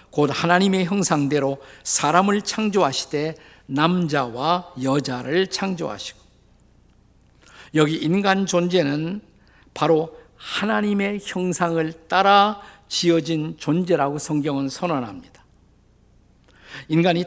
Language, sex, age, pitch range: Korean, male, 50-69, 130-180 Hz